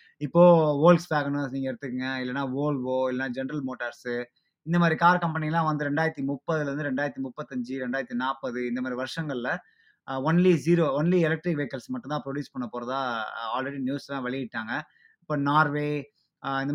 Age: 20-39